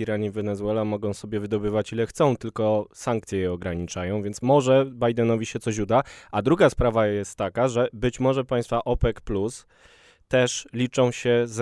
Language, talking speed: Polish, 170 wpm